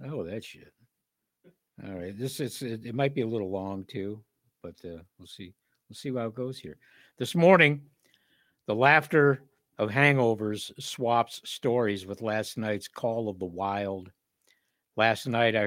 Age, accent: 60-79, American